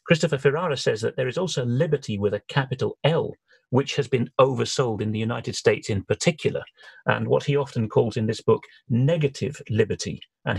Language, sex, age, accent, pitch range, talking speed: English, male, 40-59, British, 115-150 Hz, 185 wpm